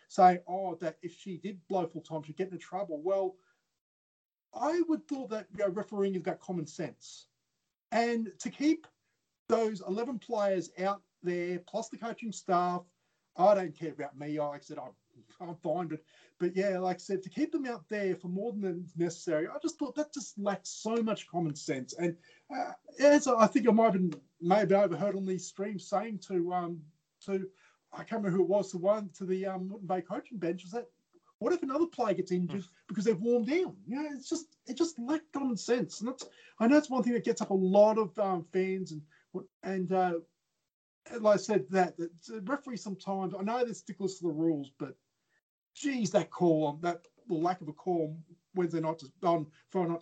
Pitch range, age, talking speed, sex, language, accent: 170-220 Hz, 30-49, 210 wpm, male, English, Australian